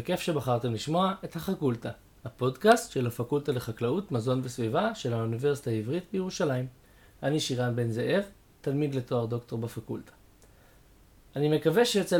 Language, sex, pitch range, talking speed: Hebrew, male, 125-170 Hz, 130 wpm